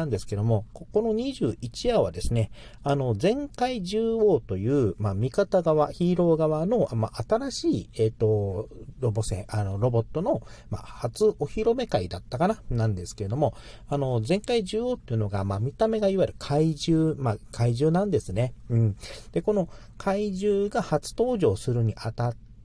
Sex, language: male, Japanese